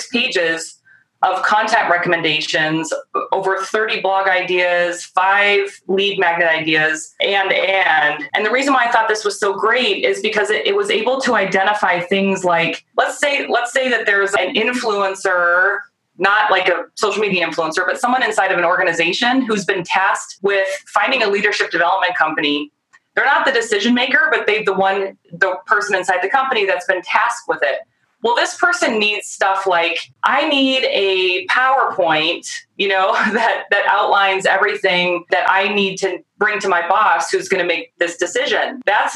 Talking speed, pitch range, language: 175 wpm, 185-245 Hz, English